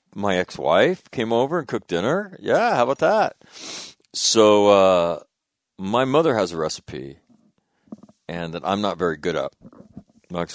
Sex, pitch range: male, 80-95 Hz